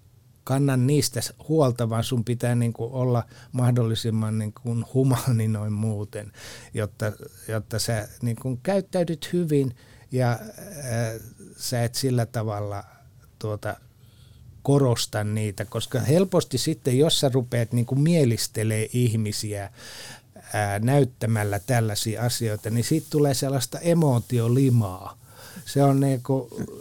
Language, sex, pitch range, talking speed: Finnish, male, 110-130 Hz, 115 wpm